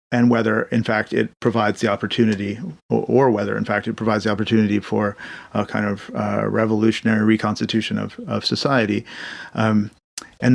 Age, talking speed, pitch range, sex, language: 40-59, 155 wpm, 105-120 Hz, male, English